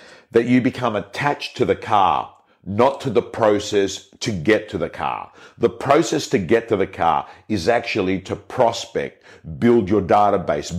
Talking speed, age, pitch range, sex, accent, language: 165 wpm, 50-69, 95-115 Hz, male, Australian, English